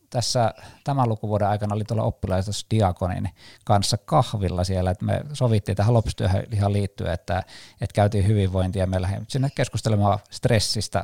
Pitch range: 95-120 Hz